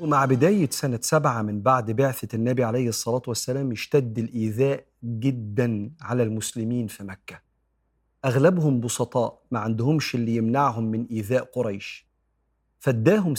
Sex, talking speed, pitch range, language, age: male, 125 wpm, 110-135 Hz, Arabic, 40-59